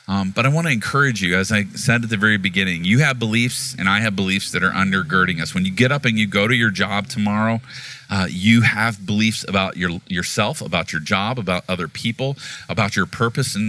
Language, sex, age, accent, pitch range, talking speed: English, male, 40-59, American, 100-125 Hz, 230 wpm